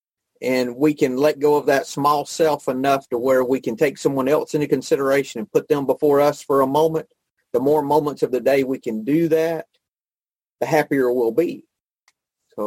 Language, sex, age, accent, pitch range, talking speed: English, male, 40-59, American, 125-155 Hz, 200 wpm